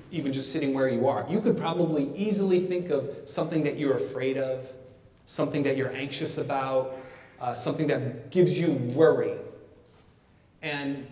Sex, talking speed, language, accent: male, 155 wpm, English, American